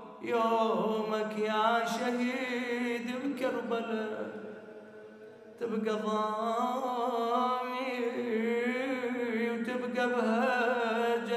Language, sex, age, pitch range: Arabic, male, 30-49, 220-260 Hz